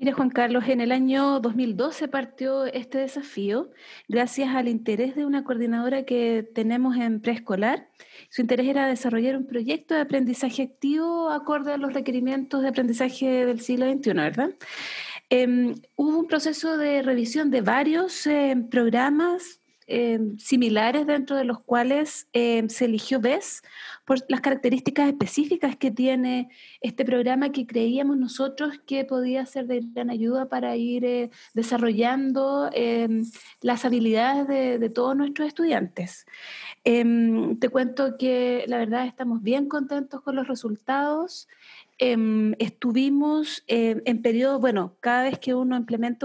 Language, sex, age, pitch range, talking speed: Spanish, female, 30-49, 235-275 Hz, 145 wpm